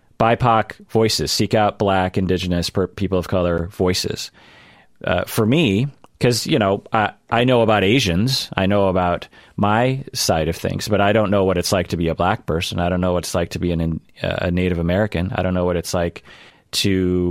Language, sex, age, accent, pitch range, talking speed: English, male, 30-49, American, 90-115 Hz, 205 wpm